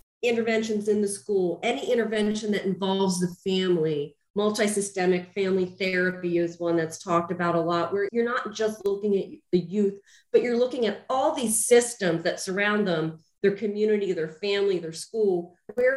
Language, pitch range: English, 180-225 Hz